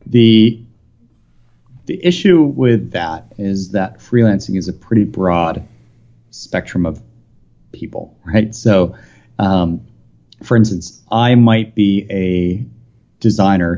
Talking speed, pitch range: 110 wpm, 90-115 Hz